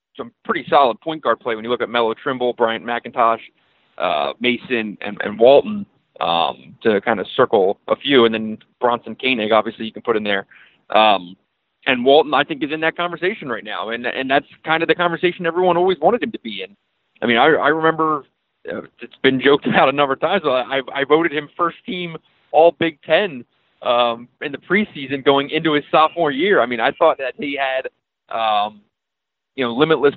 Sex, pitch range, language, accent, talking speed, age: male, 120-160 Hz, English, American, 210 wpm, 30-49